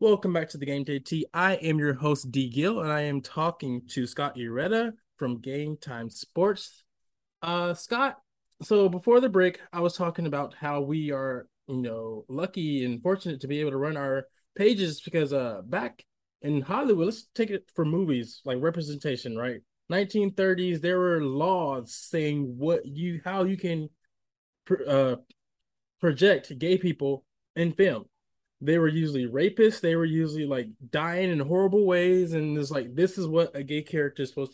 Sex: male